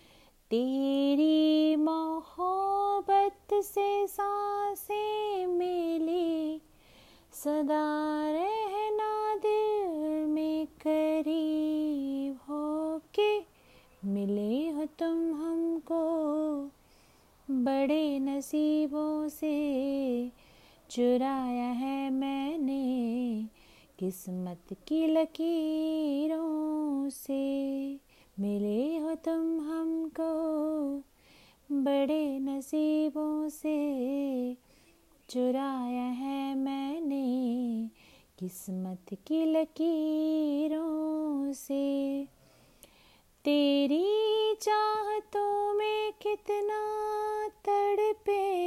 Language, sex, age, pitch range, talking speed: Hindi, female, 30-49, 275-395 Hz, 55 wpm